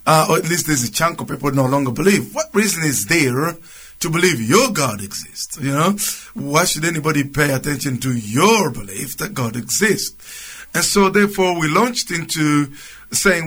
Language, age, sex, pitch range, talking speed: English, 50-69, male, 140-185 Hz, 185 wpm